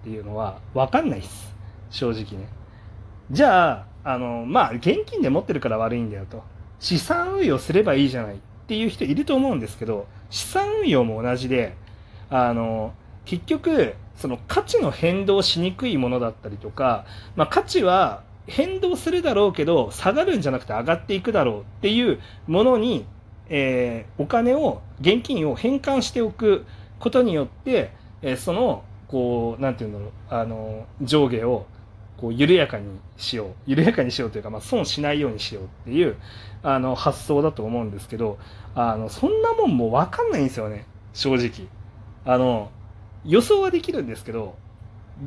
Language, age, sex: Japanese, 40-59, male